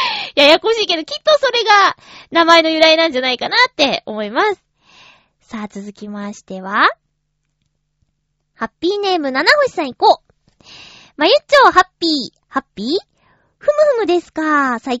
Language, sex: Japanese, female